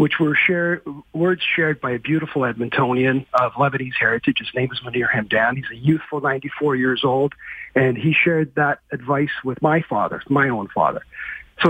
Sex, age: male, 50-69